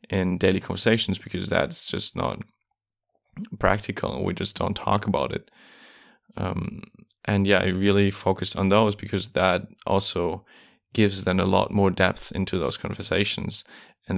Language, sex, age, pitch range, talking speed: English, male, 20-39, 90-100 Hz, 150 wpm